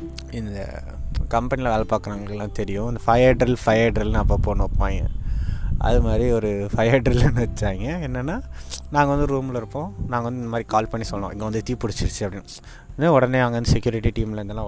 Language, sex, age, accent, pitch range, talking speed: Tamil, male, 20-39, native, 100-125 Hz, 170 wpm